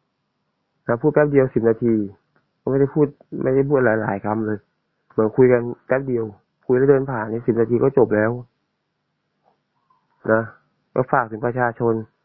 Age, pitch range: 20-39, 110-125 Hz